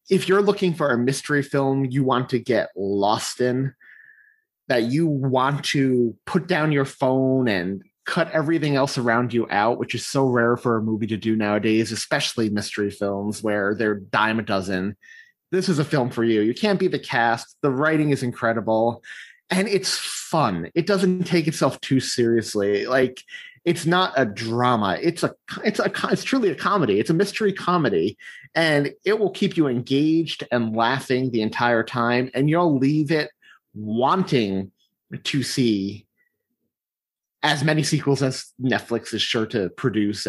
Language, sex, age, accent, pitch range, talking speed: English, male, 30-49, American, 110-155 Hz, 170 wpm